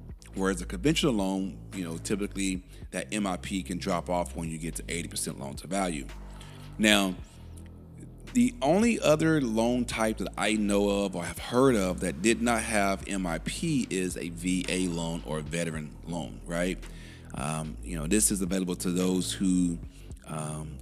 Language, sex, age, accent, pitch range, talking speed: English, male, 40-59, American, 85-100 Hz, 165 wpm